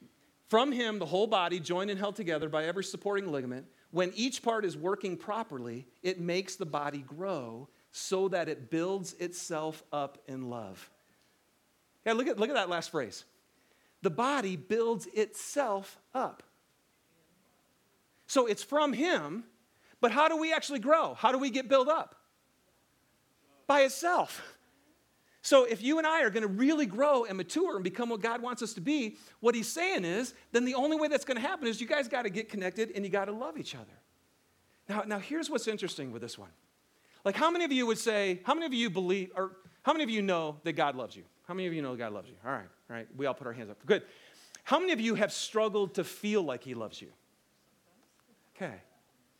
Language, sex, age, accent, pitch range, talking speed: English, male, 40-59, American, 180-260 Hz, 210 wpm